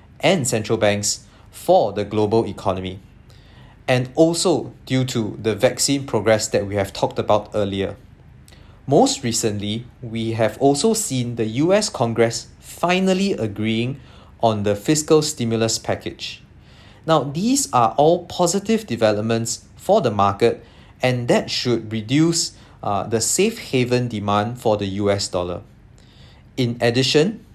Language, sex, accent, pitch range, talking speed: English, male, Malaysian, 110-145 Hz, 130 wpm